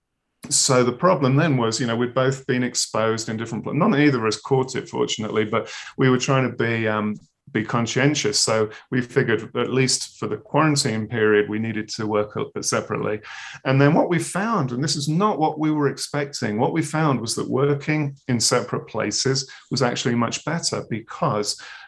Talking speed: 195 wpm